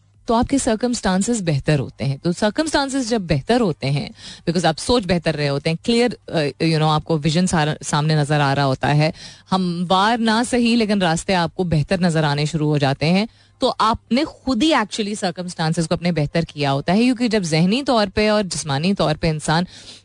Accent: native